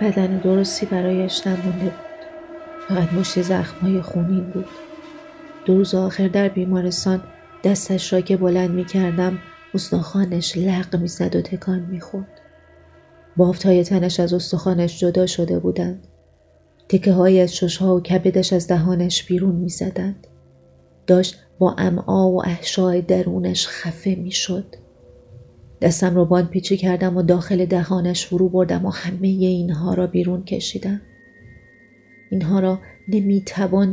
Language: Persian